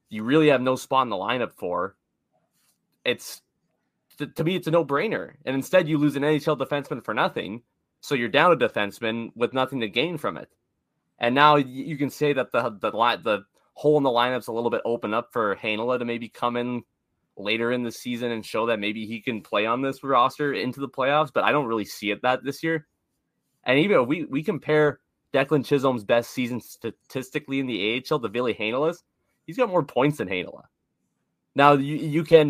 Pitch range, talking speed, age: 110-140 Hz, 210 wpm, 20-39